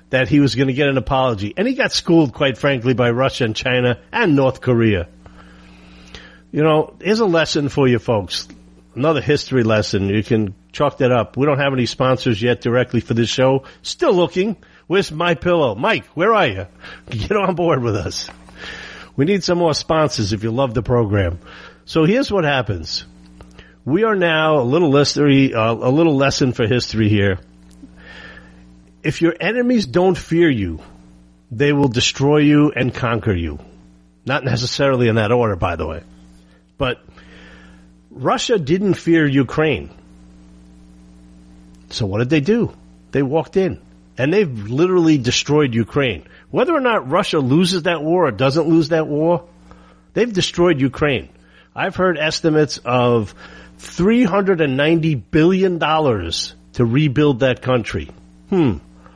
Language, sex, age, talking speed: English, male, 50-69, 155 wpm